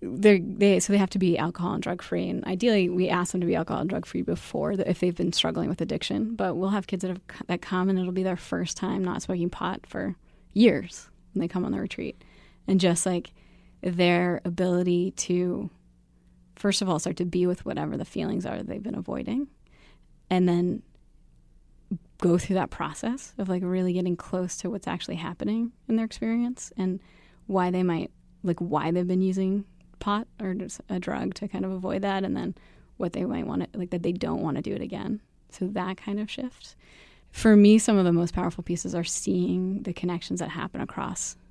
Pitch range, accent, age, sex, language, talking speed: 175-195 Hz, American, 20-39, female, English, 215 wpm